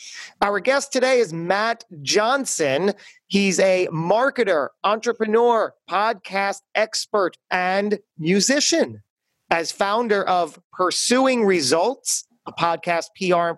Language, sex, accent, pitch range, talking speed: English, male, American, 165-225 Hz, 100 wpm